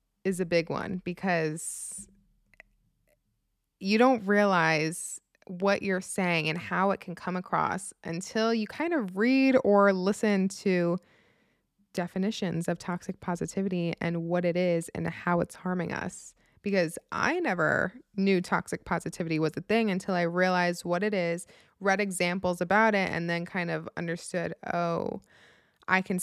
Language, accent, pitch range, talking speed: English, American, 175-200 Hz, 150 wpm